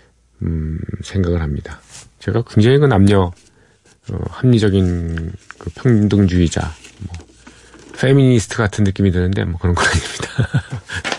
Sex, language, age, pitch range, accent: male, Korean, 40-59, 95-130 Hz, native